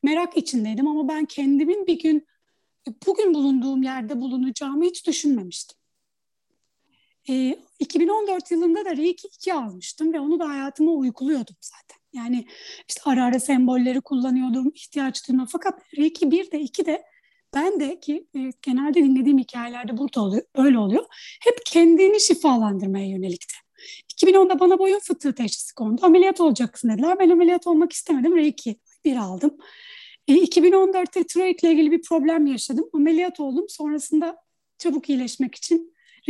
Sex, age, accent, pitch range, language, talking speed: female, 30-49, native, 260-350 Hz, Turkish, 135 wpm